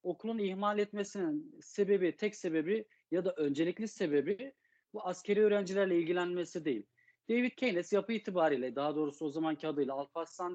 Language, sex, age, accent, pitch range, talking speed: Turkish, male, 40-59, native, 150-205 Hz, 140 wpm